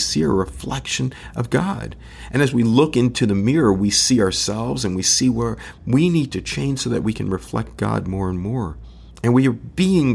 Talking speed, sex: 215 wpm, male